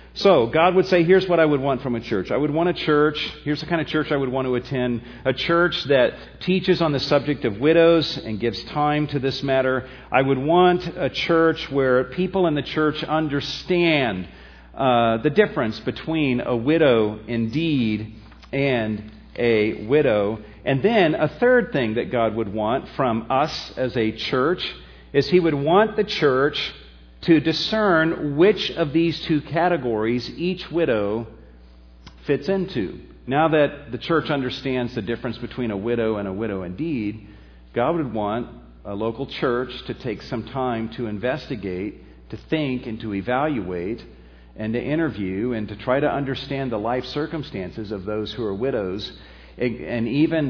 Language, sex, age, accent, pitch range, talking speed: English, male, 40-59, American, 110-155 Hz, 170 wpm